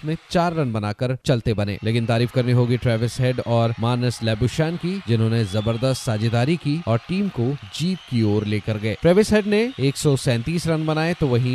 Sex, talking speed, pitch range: male, 185 wpm, 115-155 Hz